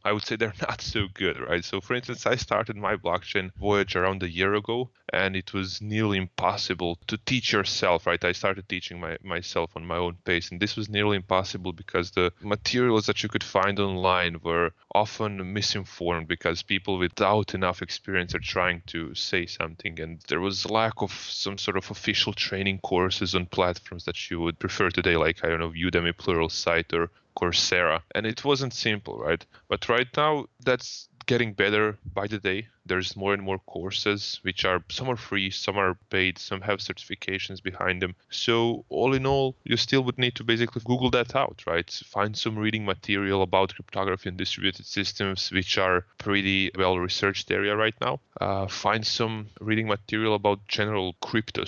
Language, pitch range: English, 90-110 Hz